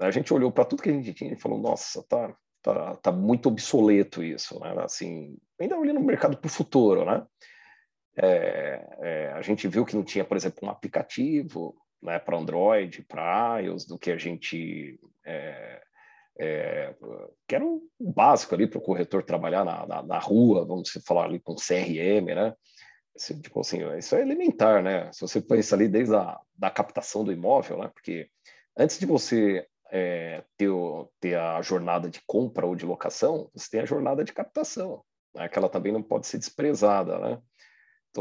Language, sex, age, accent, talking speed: Portuguese, male, 40-59, Brazilian, 170 wpm